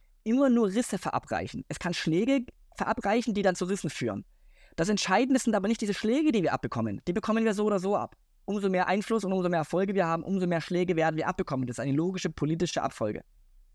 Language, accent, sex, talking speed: German, German, male, 225 wpm